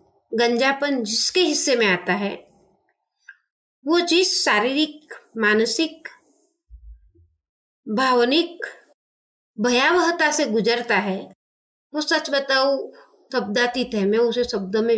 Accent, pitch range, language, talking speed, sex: native, 220-295 Hz, Hindi, 90 wpm, female